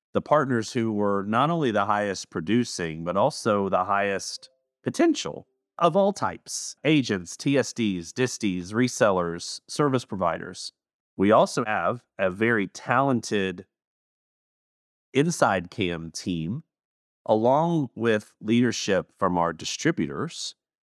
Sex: male